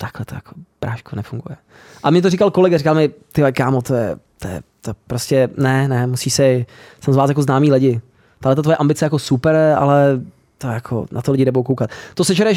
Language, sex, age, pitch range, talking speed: Czech, male, 20-39, 135-175 Hz, 225 wpm